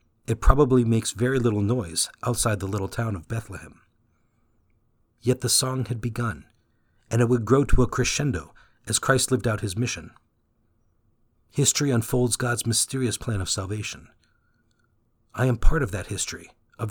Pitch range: 105-125 Hz